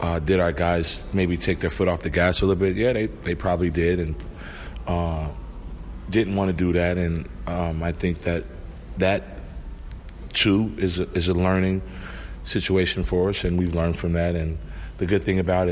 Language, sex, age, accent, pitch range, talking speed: English, male, 30-49, American, 80-95 Hz, 190 wpm